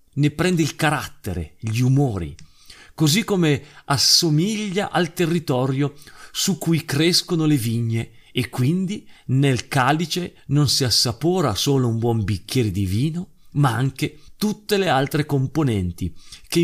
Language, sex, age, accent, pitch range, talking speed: Italian, male, 40-59, native, 115-155 Hz, 130 wpm